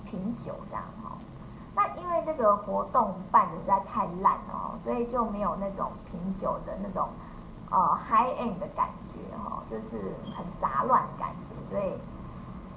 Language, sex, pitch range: Chinese, female, 195-245 Hz